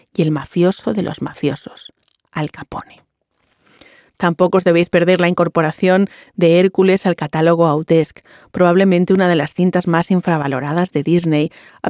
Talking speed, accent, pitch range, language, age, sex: 145 wpm, Spanish, 160-190 Hz, Spanish, 40-59, female